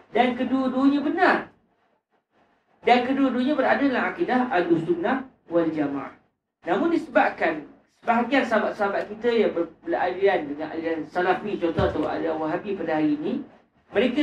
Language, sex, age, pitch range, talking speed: Malay, male, 40-59, 210-280 Hz, 130 wpm